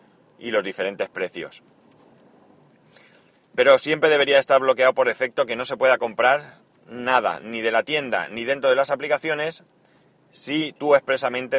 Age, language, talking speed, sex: 30-49, Spanish, 150 wpm, male